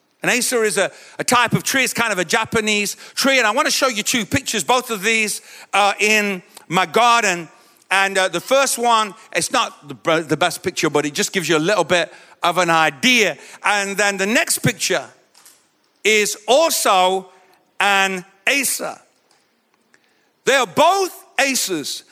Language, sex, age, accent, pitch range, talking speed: English, male, 50-69, British, 185-255 Hz, 165 wpm